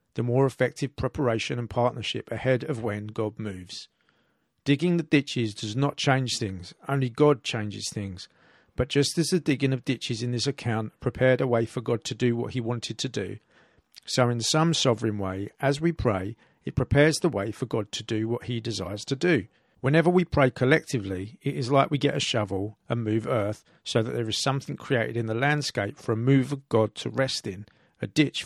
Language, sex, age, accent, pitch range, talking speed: English, male, 50-69, British, 110-140 Hz, 205 wpm